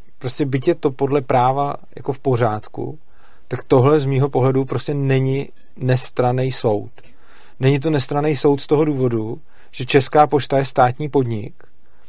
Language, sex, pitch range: Czech, male, 125-145 Hz